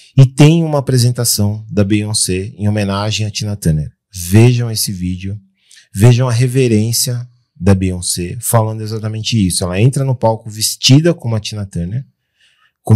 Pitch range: 95-120 Hz